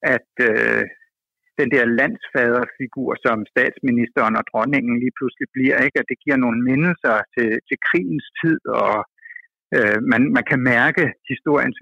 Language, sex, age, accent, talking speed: Danish, male, 60-79, native, 145 wpm